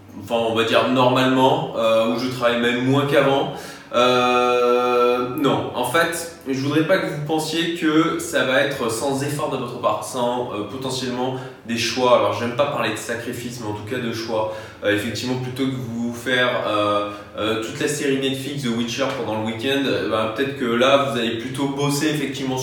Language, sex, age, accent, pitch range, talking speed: French, male, 20-39, French, 120-150 Hz, 200 wpm